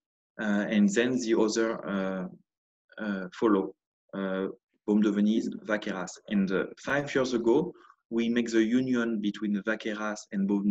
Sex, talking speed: male, 145 wpm